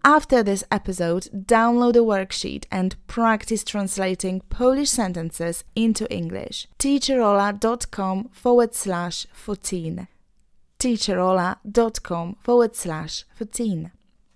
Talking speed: 90 wpm